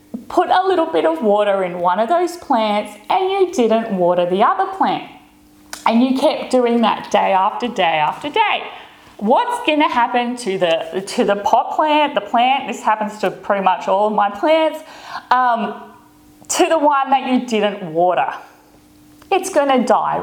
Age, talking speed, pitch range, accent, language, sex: 30-49, 175 wpm, 220-335 Hz, Australian, English, female